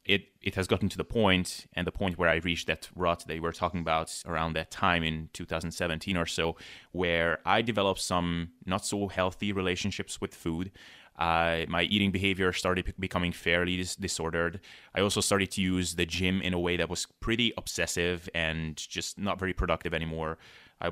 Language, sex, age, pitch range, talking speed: English, male, 20-39, 85-100 Hz, 190 wpm